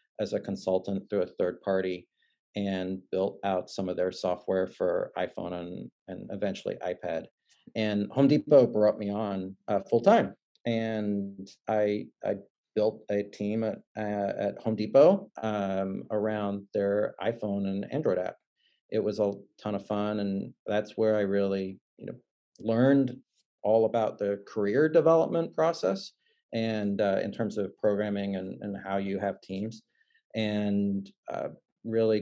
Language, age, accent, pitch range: English, 40-59, American, 100-115 Hz